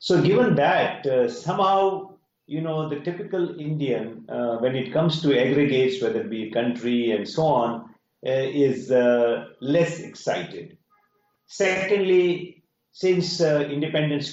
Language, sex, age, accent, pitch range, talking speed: English, male, 50-69, Indian, 100-145 Hz, 135 wpm